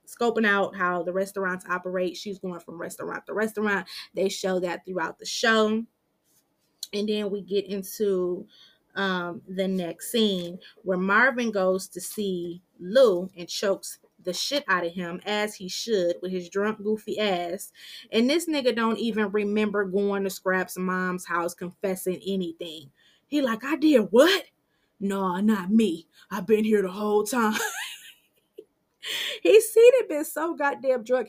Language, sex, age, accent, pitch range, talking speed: English, female, 20-39, American, 190-260 Hz, 155 wpm